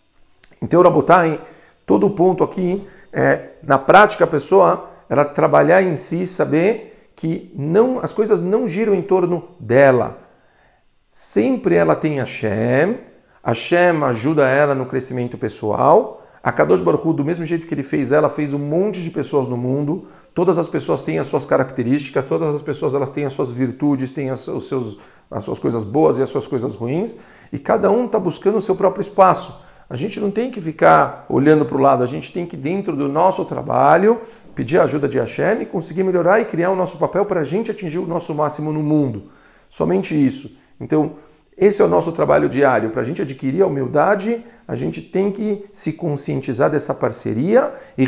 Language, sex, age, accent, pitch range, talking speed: Portuguese, male, 50-69, Brazilian, 135-185 Hz, 195 wpm